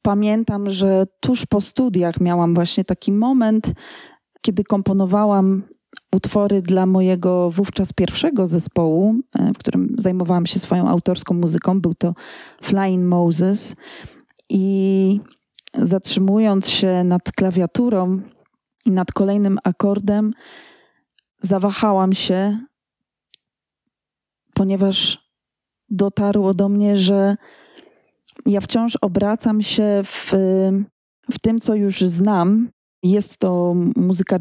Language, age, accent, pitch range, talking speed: Polish, 20-39, native, 185-210 Hz, 100 wpm